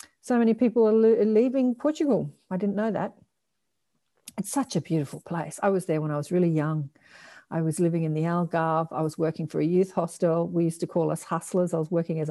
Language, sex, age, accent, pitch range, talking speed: English, female, 50-69, Australian, 170-205 Hz, 225 wpm